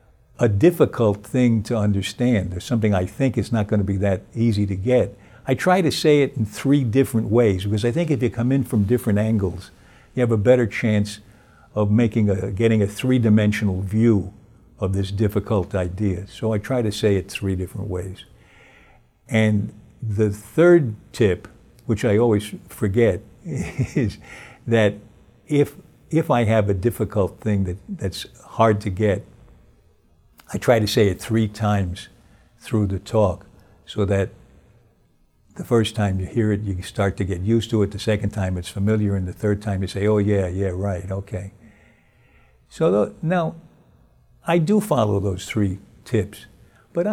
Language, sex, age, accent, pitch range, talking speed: English, male, 60-79, American, 100-120 Hz, 170 wpm